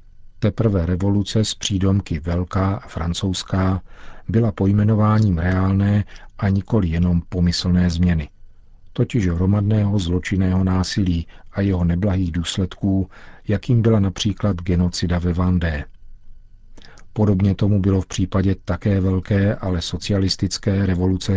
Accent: native